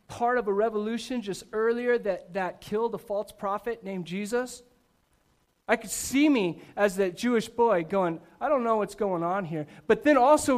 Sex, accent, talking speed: male, American, 185 wpm